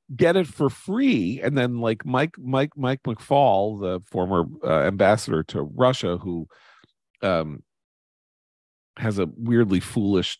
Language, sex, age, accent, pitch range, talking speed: English, male, 40-59, American, 100-145 Hz, 135 wpm